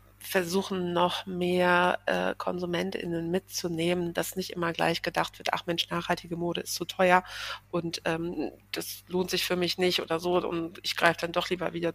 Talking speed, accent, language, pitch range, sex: 180 wpm, German, German, 150-180 Hz, female